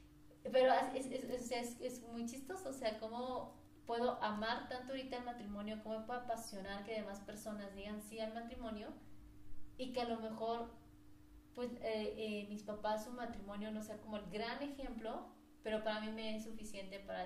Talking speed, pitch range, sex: 180 wpm, 205-245 Hz, female